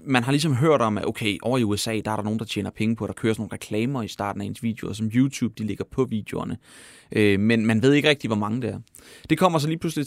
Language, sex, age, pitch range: Danish, male, 30-49, 110-130 Hz